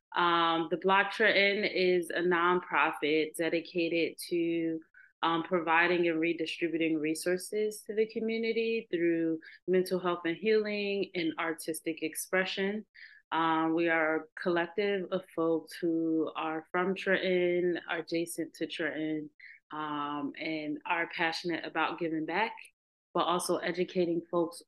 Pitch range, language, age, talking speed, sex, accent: 160-185 Hz, English, 30-49, 125 wpm, female, American